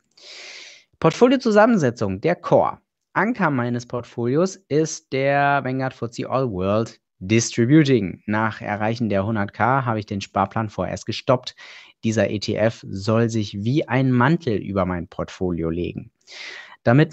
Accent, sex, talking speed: German, male, 125 wpm